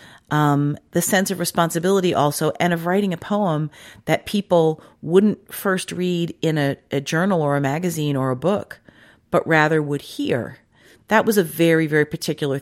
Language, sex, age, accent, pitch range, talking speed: English, female, 40-59, American, 130-160 Hz, 170 wpm